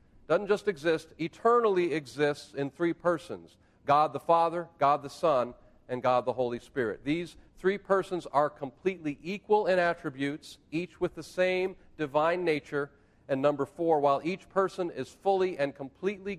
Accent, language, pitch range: American, English, 125-175 Hz